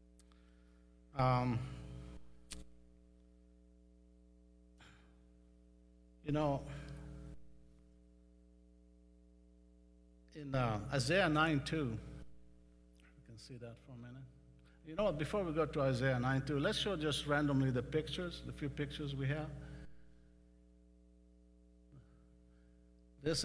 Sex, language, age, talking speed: male, English, 50-69, 90 wpm